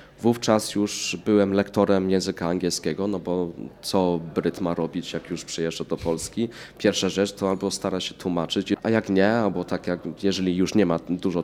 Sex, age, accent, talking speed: male, 20-39, native, 185 wpm